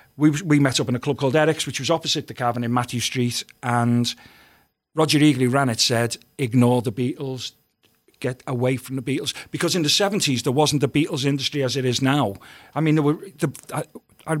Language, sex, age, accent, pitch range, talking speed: English, male, 40-59, British, 130-160 Hz, 210 wpm